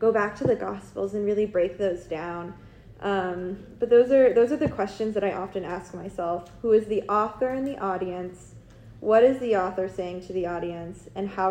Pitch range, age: 185-220 Hz, 20-39